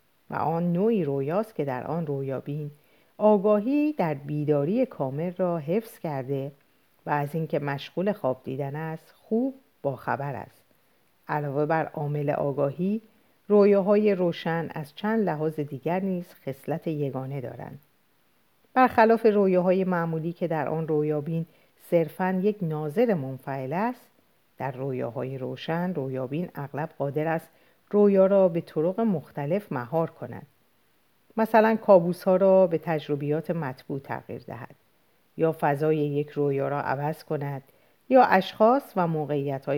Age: 50-69